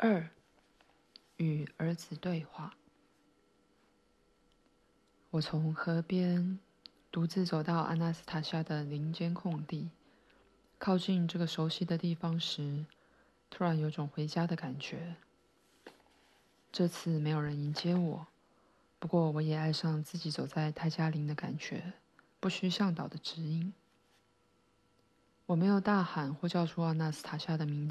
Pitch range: 155-175 Hz